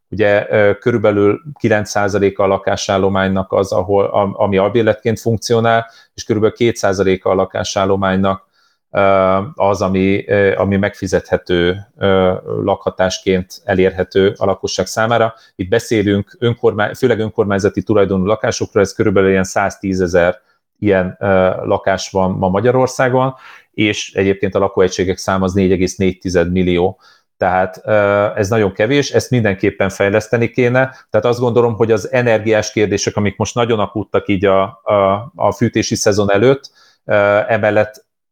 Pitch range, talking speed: 95-115 Hz, 120 wpm